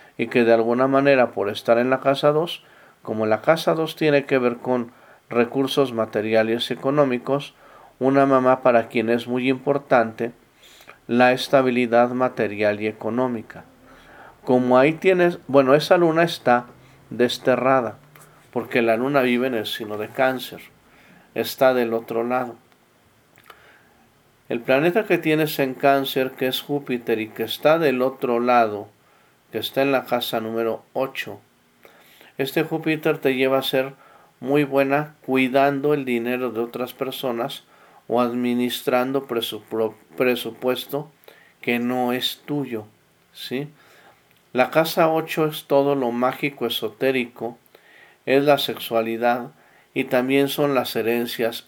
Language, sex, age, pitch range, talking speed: Italian, male, 40-59, 120-140 Hz, 135 wpm